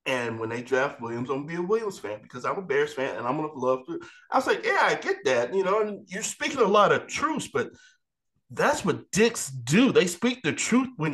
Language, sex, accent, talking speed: English, male, American, 260 wpm